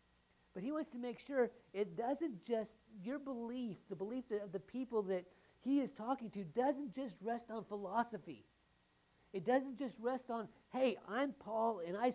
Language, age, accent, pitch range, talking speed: English, 50-69, American, 175-250 Hz, 180 wpm